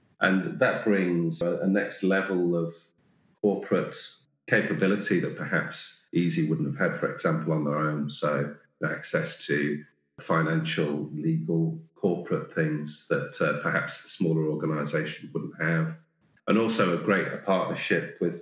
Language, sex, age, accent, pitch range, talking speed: English, male, 40-59, British, 80-115 Hz, 145 wpm